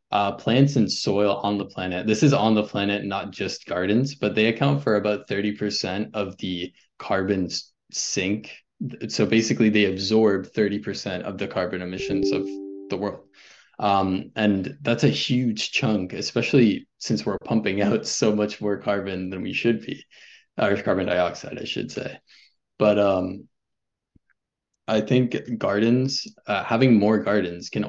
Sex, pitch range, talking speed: male, 95-110 Hz, 160 wpm